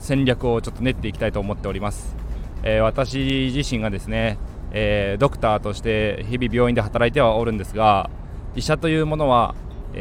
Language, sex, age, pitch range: Japanese, male, 20-39, 105-135 Hz